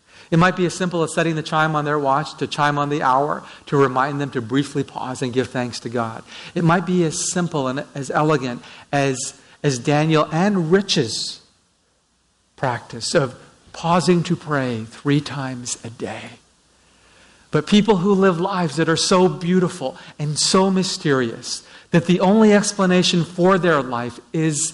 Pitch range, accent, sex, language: 140-180 Hz, American, male, English